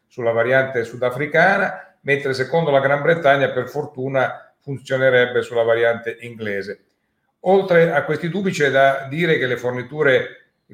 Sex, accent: male, native